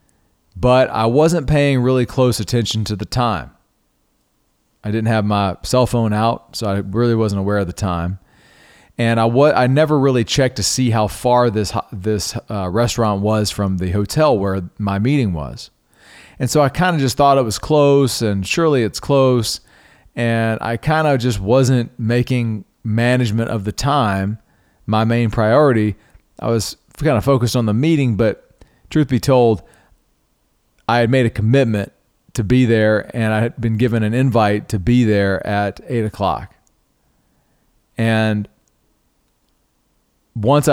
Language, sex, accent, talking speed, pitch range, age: English, male, American, 160 wpm, 105-125 Hz, 40-59